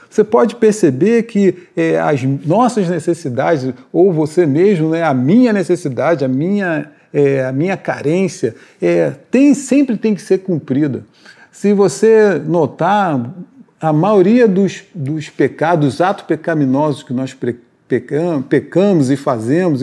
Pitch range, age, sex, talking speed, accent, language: 155-205 Hz, 40-59, male, 135 wpm, Brazilian, Portuguese